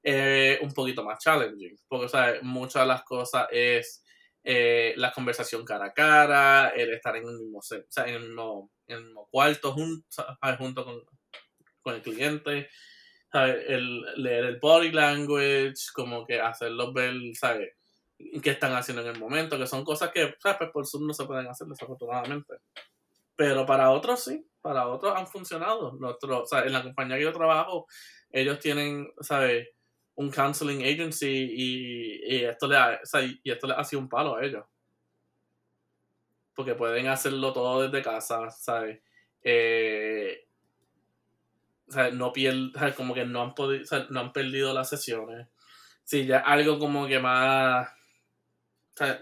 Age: 20-39